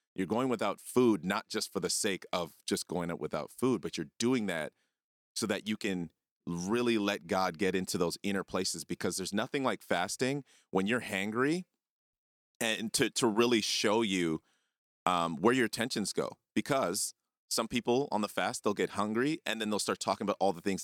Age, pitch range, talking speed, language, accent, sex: 30-49, 85-105 Hz, 195 wpm, English, American, male